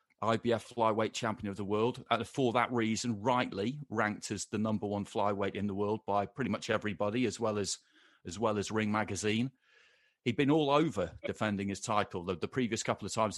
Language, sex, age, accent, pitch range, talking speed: English, male, 40-59, British, 105-130 Hz, 195 wpm